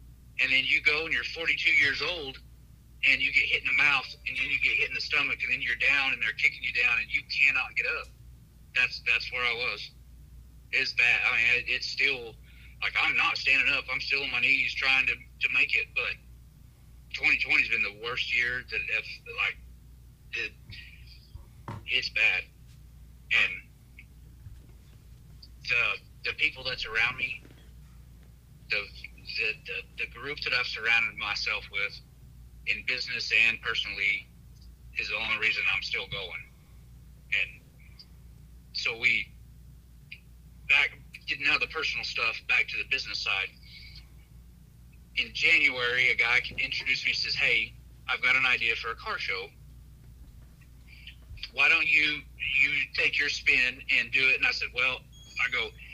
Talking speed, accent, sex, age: 160 wpm, American, male, 50-69